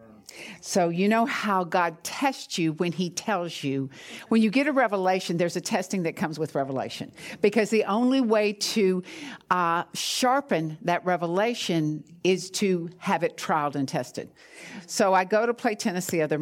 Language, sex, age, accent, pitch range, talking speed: English, female, 60-79, American, 155-205 Hz, 170 wpm